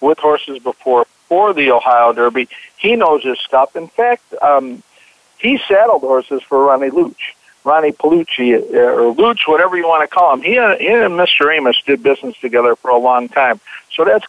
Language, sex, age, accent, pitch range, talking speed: English, male, 60-79, American, 135-205 Hz, 185 wpm